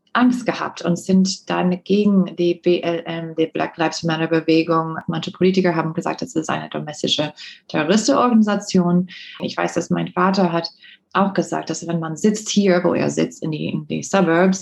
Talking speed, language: 175 wpm, German